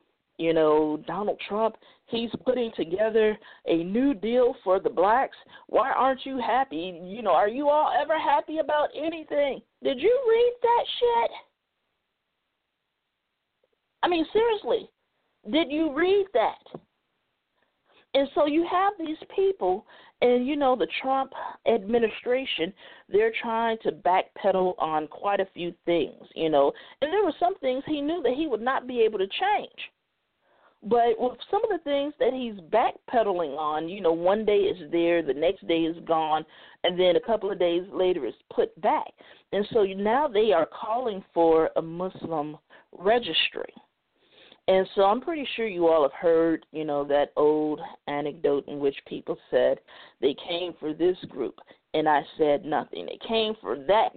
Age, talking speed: 40-59, 165 wpm